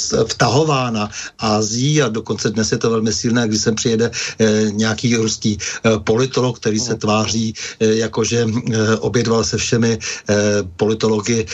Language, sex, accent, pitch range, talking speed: Czech, male, native, 110-130 Hz, 120 wpm